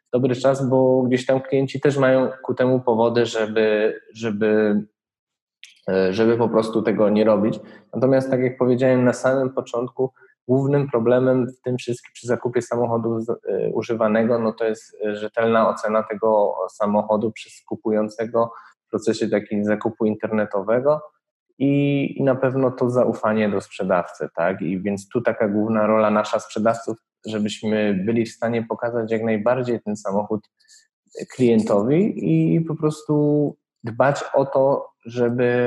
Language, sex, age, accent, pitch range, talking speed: Polish, male, 20-39, native, 105-125 Hz, 135 wpm